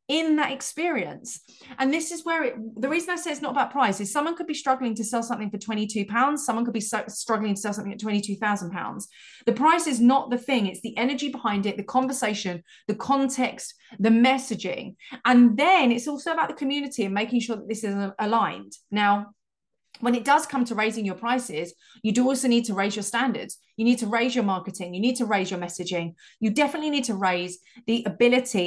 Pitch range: 210-285 Hz